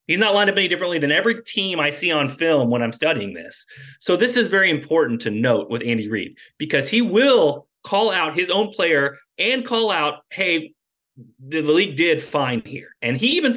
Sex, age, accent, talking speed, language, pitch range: male, 30-49, American, 210 wpm, English, 125-175 Hz